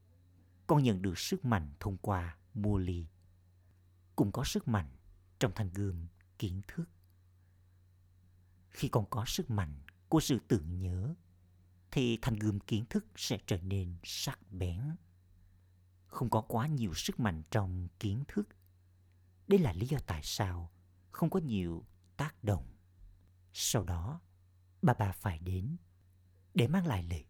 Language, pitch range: Vietnamese, 90-110 Hz